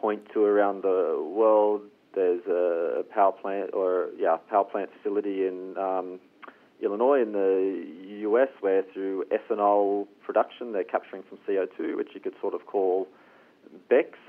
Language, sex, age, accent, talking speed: English, male, 30-49, Australian, 145 wpm